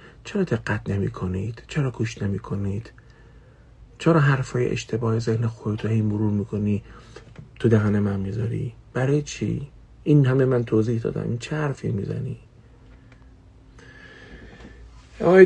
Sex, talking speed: male, 115 wpm